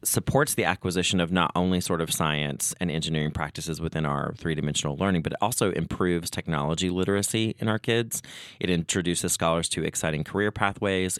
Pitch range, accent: 85-110 Hz, American